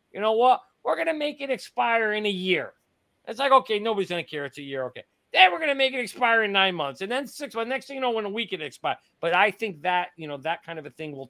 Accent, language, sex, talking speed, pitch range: American, English, male, 310 wpm, 125-160 Hz